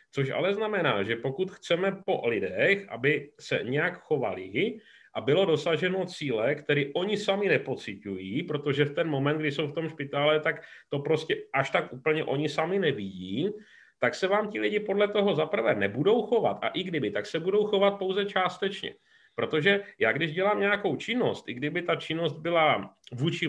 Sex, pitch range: male, 130-195 Hz